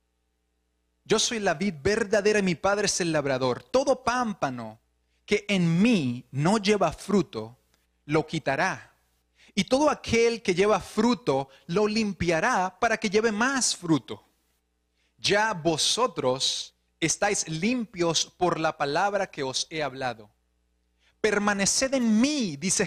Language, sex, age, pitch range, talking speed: Spanish, male, 30-49, 140-225 Hz, 130 wpm